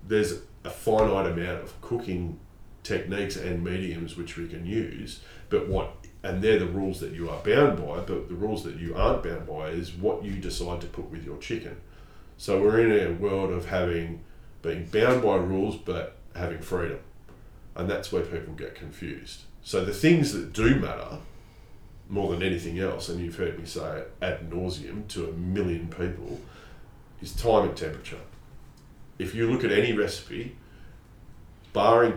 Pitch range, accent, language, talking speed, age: 85-105 Hz, Australian, English, 175 wpm, 30-49